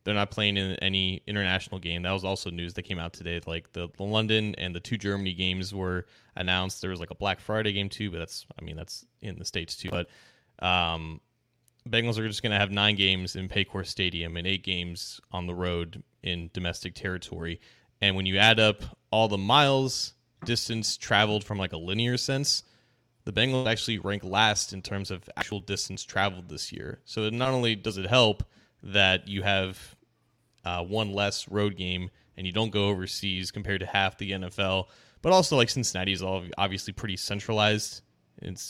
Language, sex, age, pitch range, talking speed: English, male, 20-39, 95-110 Hz, 195 wpm